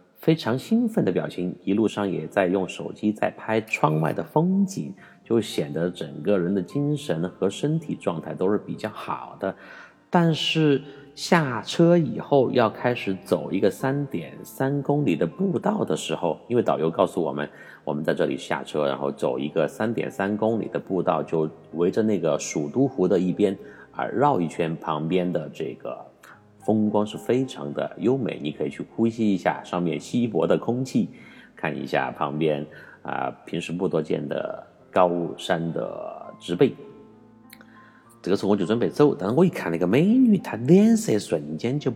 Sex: male